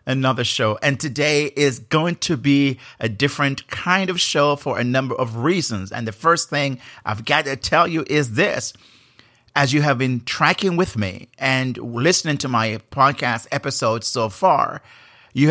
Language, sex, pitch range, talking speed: English, male, 125-150 Hz, 175 wpm